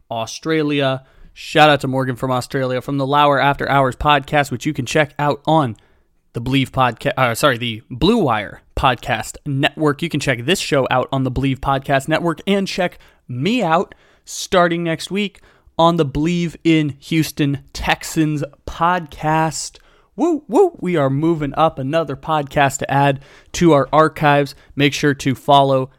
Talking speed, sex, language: 165 wpm, male, English